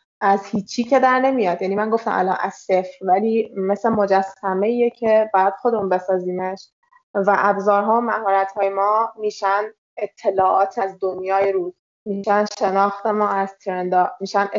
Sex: female